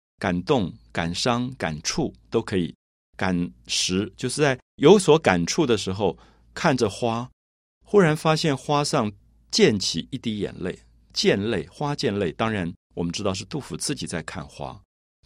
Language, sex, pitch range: Chinese, male, 80-125 Hz